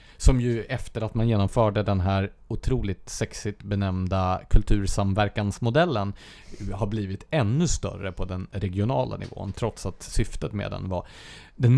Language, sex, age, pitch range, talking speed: English, male, 30-49, 95-125 Hz, 140 wpm